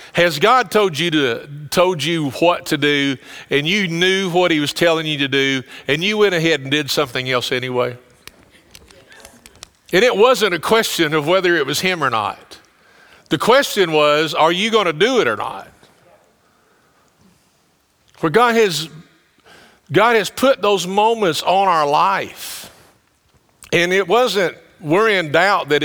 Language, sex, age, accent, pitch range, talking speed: English, male, 50-69, American, 130-185 Hz, 155 wpm